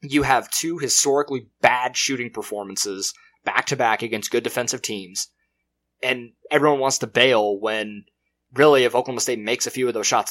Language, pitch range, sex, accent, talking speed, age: English, 115-145 Hz, male, American, 165 wpm, 20-39